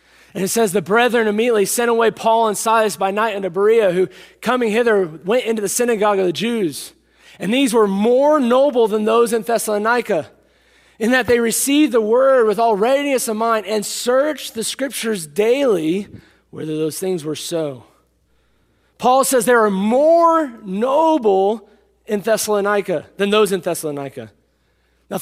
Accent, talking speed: American, 160 wpm